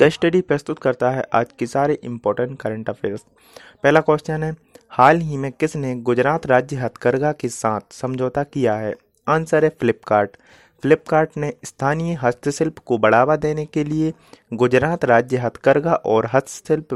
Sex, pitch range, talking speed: male, 120-155 Hz, 150 wpm